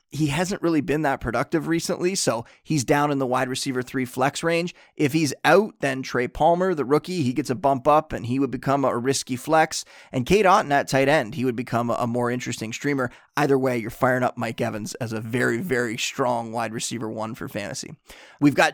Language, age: English, 30-49